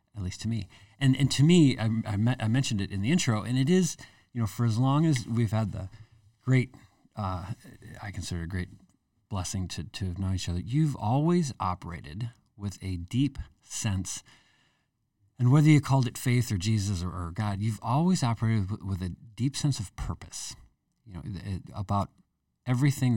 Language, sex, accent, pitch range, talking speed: English, male, American, 95-120 Hz, 190 wpm